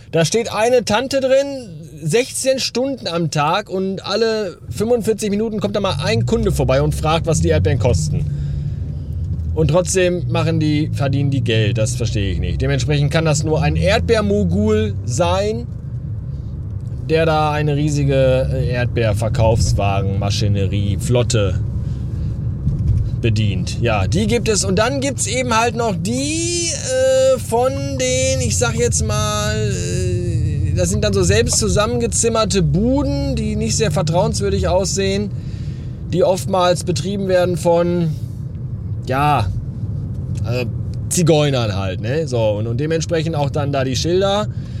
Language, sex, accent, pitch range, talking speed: German, male, German, 110-155 Hz, 130 wpm